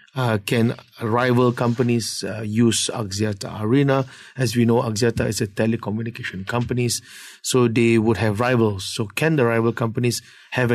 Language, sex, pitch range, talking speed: English, male, 110-130 Hz, 150 wpm